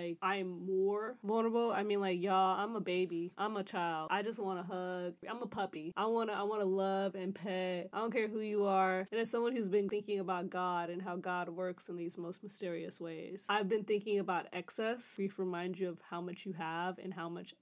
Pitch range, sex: 180-205 Hz, female